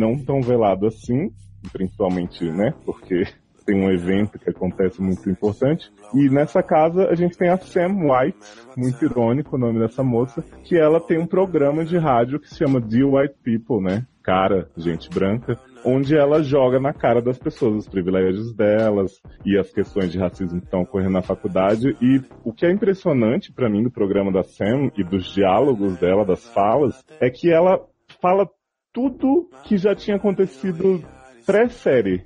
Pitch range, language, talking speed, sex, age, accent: 105-160 Hz, English, 175 wpm, male, 20-39, Brazilian